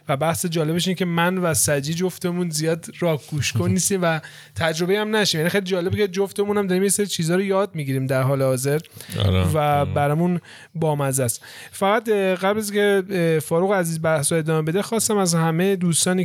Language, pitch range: Persian, 145-175 Hz